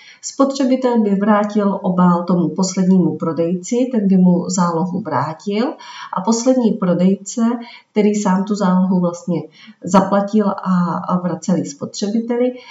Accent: native